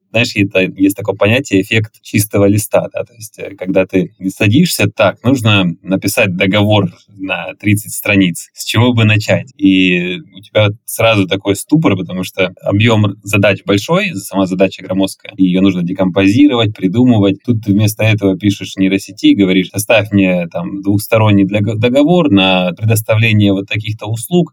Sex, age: male, 20-39